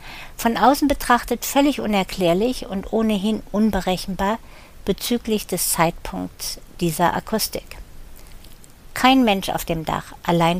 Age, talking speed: 50-69, 110 wpm